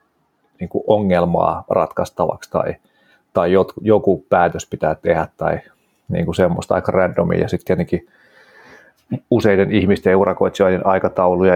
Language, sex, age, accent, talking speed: Finnish, male, 30-49, native, 110 wpm